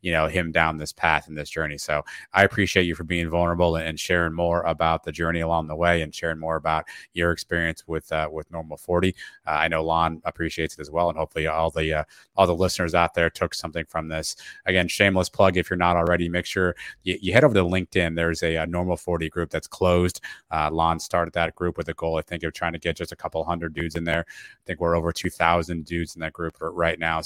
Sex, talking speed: male, 250 wpm